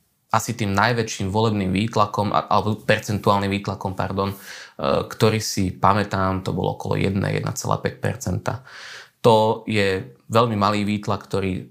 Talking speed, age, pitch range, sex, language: 120 wpm, 20-39, 95-120 Hz, male, Slovak